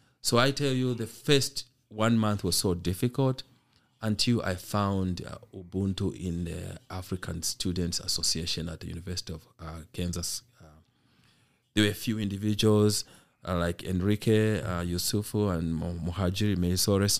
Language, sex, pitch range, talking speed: English, male, 90-120 Hz, 155 wpm